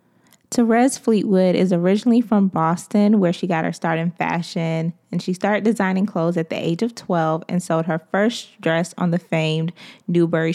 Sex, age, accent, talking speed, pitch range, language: female, 20-39, American, 180 wpm, 170-210 Hz, English